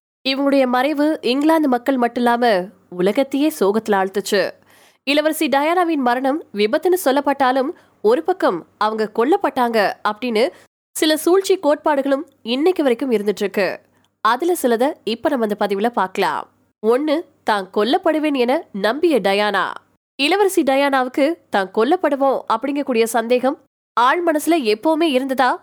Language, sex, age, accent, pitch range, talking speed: Tamil, female, 20-39, native, 235-300 Hz, 55 wpm